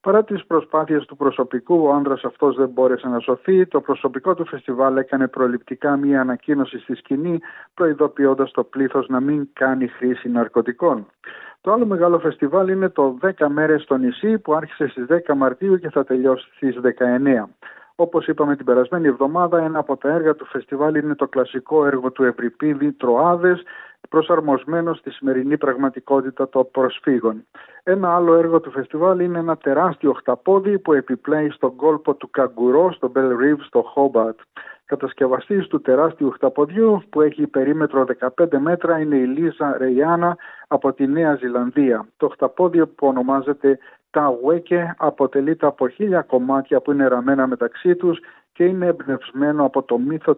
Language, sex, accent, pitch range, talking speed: Greek, male, native, 130-165 Hz, 155 wpm